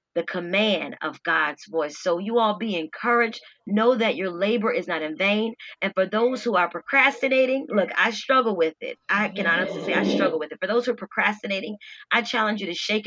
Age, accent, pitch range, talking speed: 30-49, American, 170-225 Hz, 215 wpm